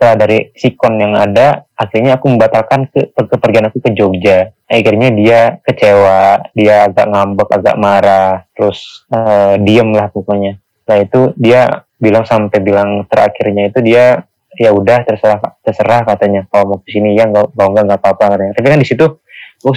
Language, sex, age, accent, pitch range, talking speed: Indonesian, male, 20-39, native, 100-120 Hz, 165 wpm